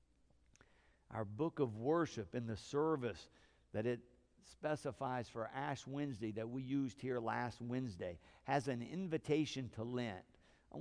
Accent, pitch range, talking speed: American, 110-165 Hz, 140 wpm